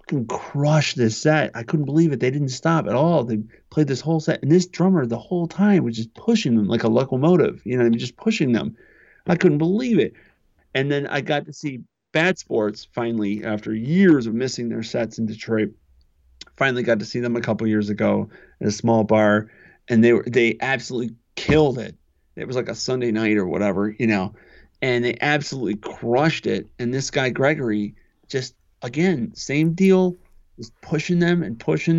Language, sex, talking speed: English, male, 205 wpm